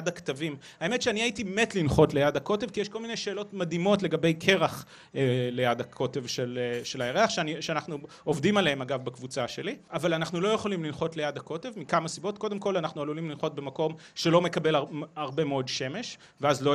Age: 30-49